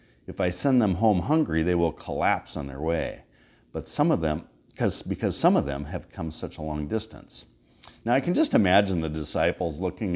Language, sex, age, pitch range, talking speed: English, male, 50-69, 80-115 Hz, 205 wpm